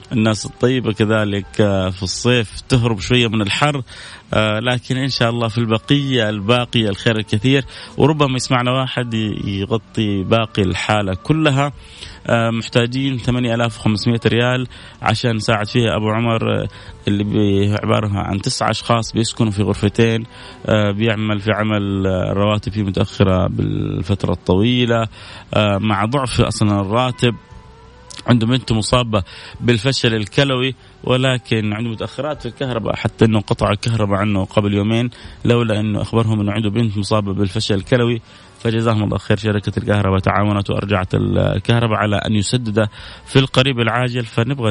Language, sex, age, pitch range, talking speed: Arabic, male, 30-49, 100-120 Hz, 125 wpm